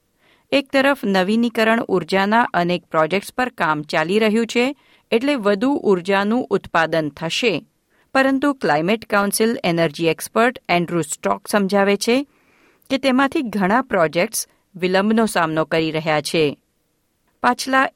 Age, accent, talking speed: 50-69, native, 115 wpm